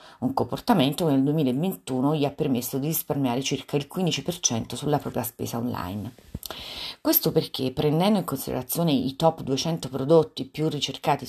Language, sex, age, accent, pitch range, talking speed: Italian, female, 40-59, native, 135-160 Hz, 150 wpm